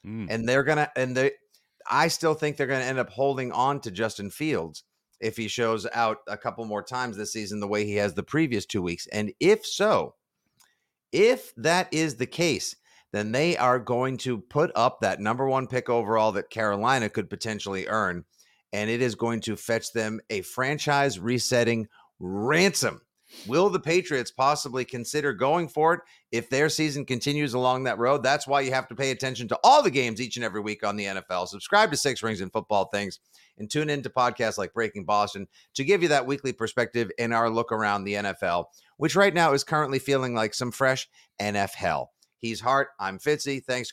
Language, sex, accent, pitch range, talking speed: English, male, American, 110-145 Hz, 200 wpm